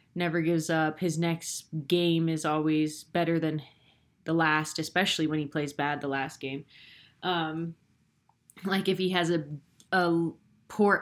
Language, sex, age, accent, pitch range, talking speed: English, female, 20-39, American, 155-195 Hz, 150 wpm